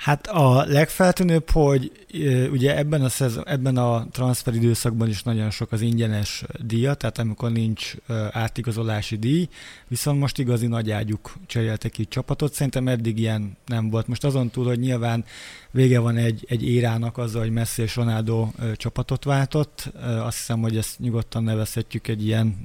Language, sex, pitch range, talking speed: Hungarian, male, 115-135 Hz, 160 wpm